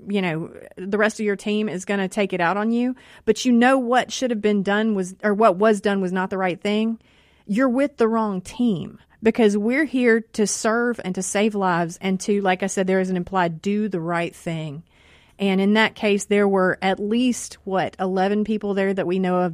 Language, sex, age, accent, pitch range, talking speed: English, female, 30-49, American, 180-215 Hz, 235 wpm